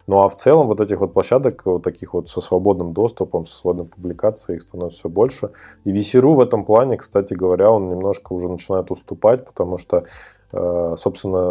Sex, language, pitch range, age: male, Russian, 85-95 Hz, 20-39